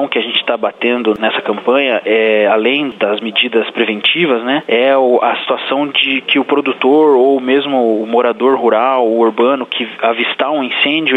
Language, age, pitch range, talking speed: Portuguese, 20-39, 115-135 Hz, 165 wpm